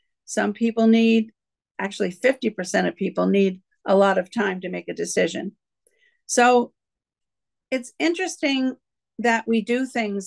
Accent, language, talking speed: American, English, 135 wpm